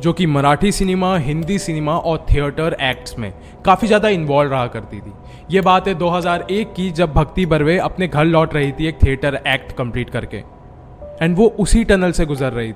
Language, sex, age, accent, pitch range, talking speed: Hindi, male, 20-39, native, 125-185 Hz, 195 wpm